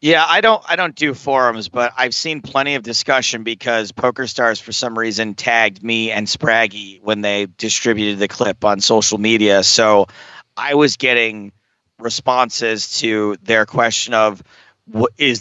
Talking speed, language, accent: 155 wpm, English, American